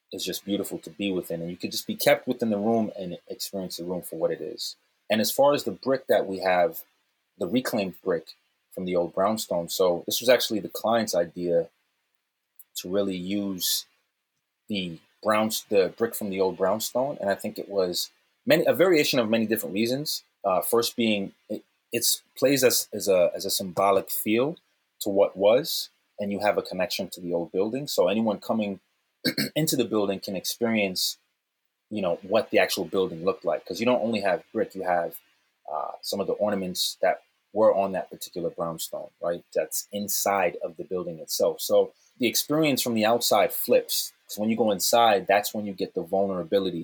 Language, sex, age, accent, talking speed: English, male, 30-49, American, 195 wpm